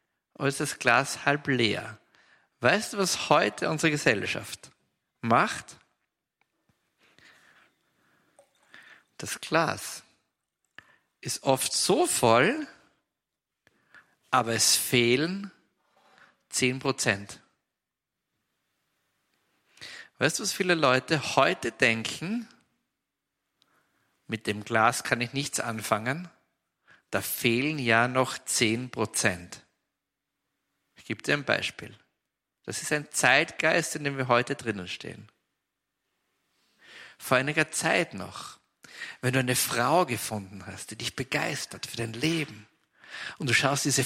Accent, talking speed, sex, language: German, 105 wpm, male, German